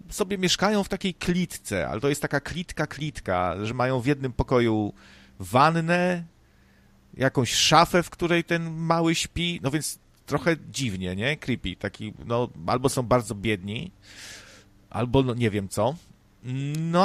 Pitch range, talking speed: 110-155 Hz, 135 wpm